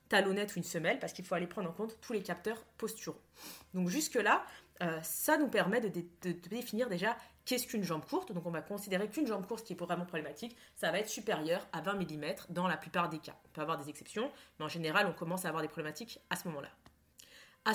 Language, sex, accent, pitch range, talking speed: French, female, French, 175-225 Hz, 240 wpm